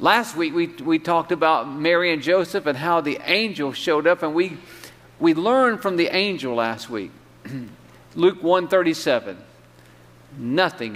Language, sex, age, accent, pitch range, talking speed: English, male, 50-69, American, 120-175 Hz, 150 wpm